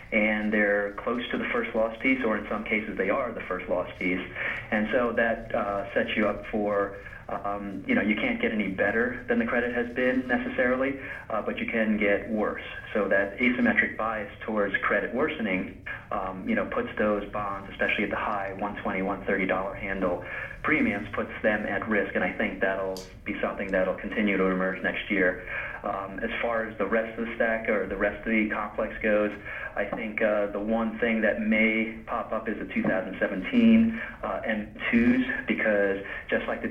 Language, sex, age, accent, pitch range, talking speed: English, male, 40-59, American, 100-110 Hz, 190 wpm